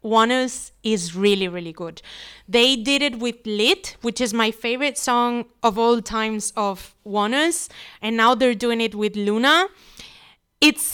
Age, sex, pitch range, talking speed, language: 20-39, female, 225-275 Hz, 155 wpm, English